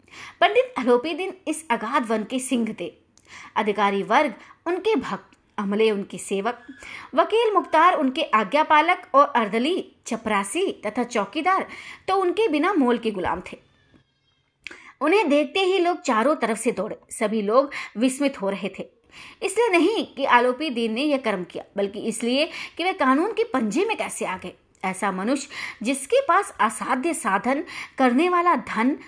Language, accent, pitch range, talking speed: Hindi, native, 220-330 Hz, 150 wpm